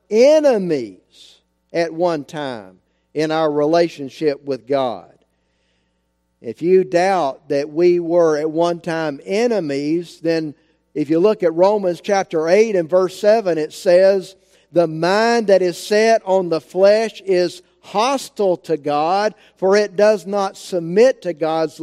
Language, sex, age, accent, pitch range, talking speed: English, male, 50-69, American, 155-205 Hz, 140 wpm